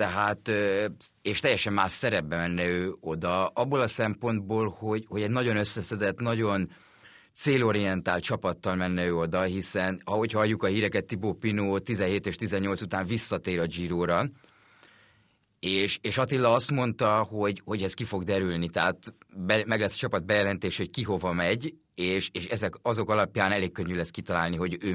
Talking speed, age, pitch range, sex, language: 165 wpm, 30-49, 95-110 Hz, male, Hungarian